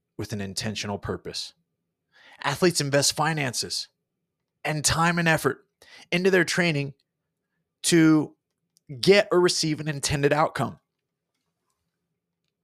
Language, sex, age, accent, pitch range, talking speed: English, male, 30-49, American, 140-170 Hz, 100 wpm